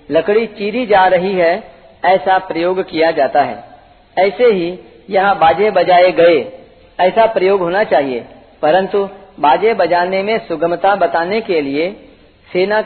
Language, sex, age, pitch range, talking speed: Hindi, female, 50-69, 170-215 Hz, 135 wpm